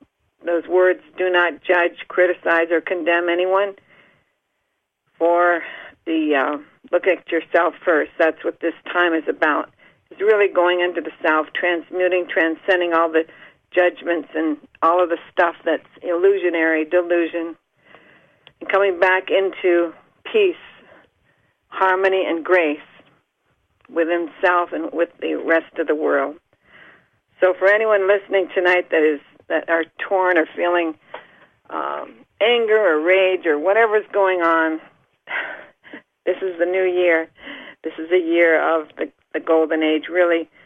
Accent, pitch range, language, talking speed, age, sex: American, 165-190 Hz, English, 135 wpm, 60-79, female